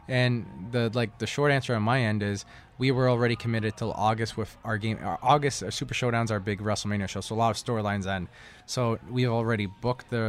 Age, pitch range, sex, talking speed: 20-39, 105-125 Hz, male, 225 wpm